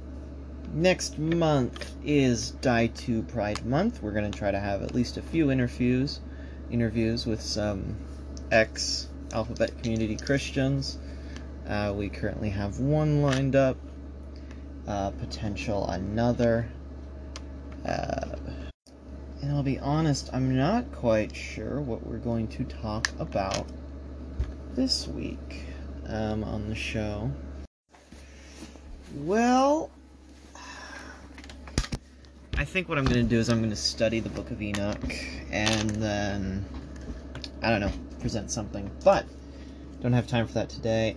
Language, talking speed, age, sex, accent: English, 125 wpm, 30-49, male, American